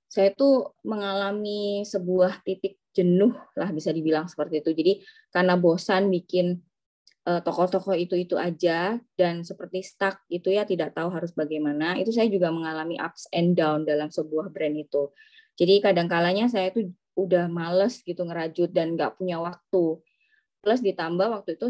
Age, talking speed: 20-39, 150 wpm